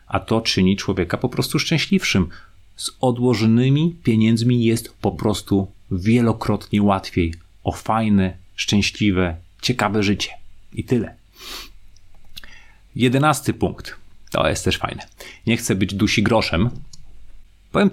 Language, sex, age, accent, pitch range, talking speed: Polish, male, 30-49, native, 95-130 Hz, 115 wpm